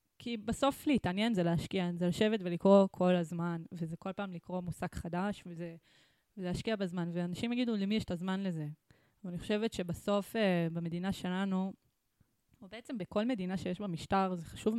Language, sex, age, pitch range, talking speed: Hebrew, female, 20-39, 175-195 Hz, 160 wpm